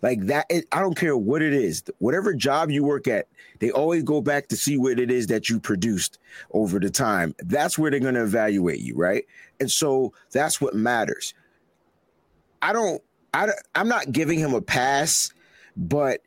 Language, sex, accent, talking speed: English, male, American, 190 wpm